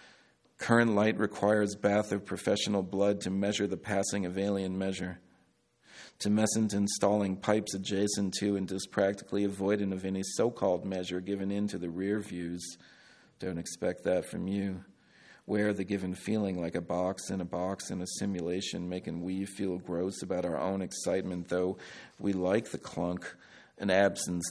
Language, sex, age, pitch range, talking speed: English, male, 40-59, 90-100 Hz, 160 wpm